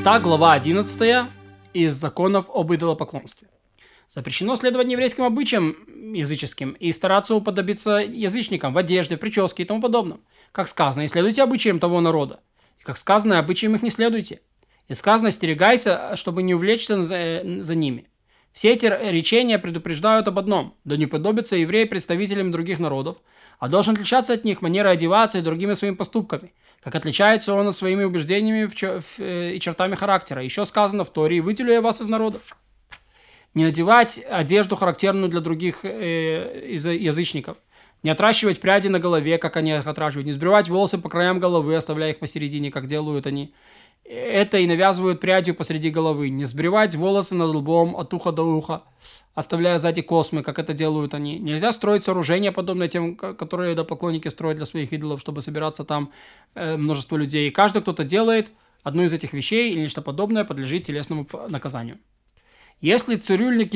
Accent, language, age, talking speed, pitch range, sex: native, Russian, 20-39, 155 wpm, 160-210 Hz, male